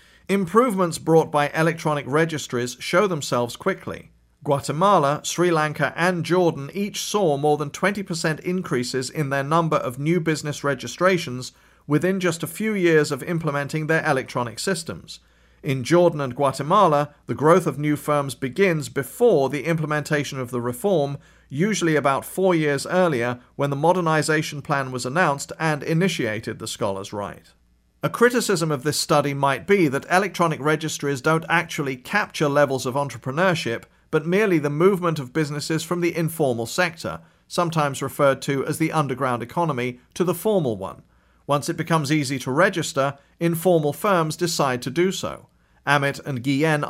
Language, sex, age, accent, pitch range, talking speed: English, male, 40-59, British, 140-170 Hz, 155 wpm